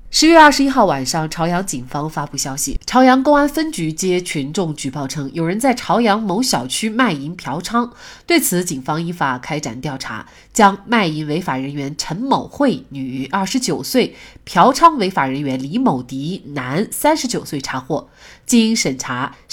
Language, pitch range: Chinese, 150-235 Hz